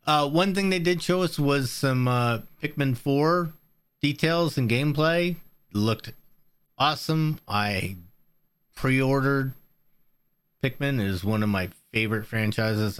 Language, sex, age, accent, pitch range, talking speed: English, male, 30-49, American, 100-145 Hz, 130 wpm